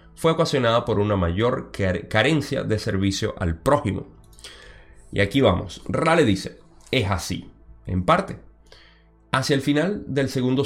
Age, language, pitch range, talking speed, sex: 30-49, Spanish, 95-135 Hz, 135 wpm, male